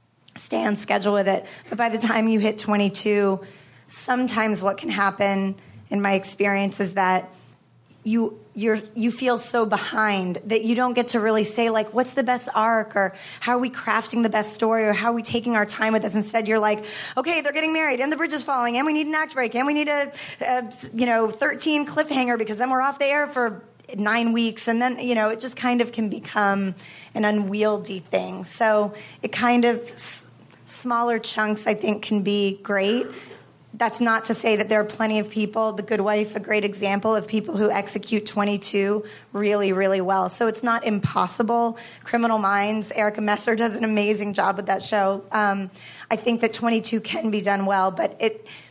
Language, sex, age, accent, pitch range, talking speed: English, female, 20-39, American, 205-235 Hz, 205 wpm